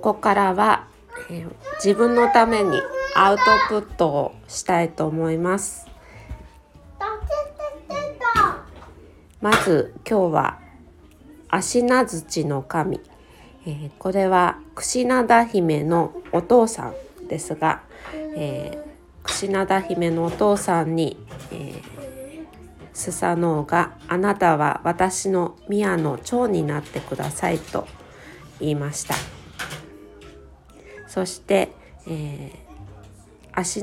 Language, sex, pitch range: Japanese, female, 150-205 Hz